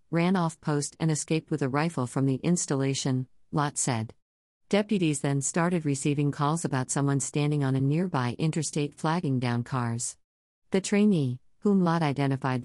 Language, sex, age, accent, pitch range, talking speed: English, female, 50-69, American, 130-155 Hz, 155 wpm